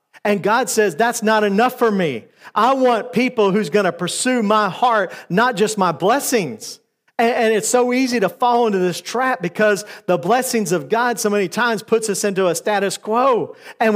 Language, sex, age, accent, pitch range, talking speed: English, male, 50-69, American, 180-225 Hz, 200 wpm